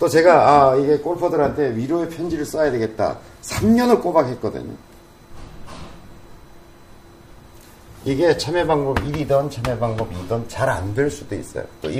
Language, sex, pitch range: Korean, male, 100-140 Hz